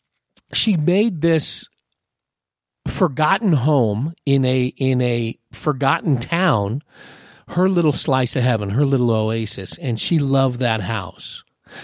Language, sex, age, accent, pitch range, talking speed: English, male, 50-69, American, 120-155 Hz, 120 wpm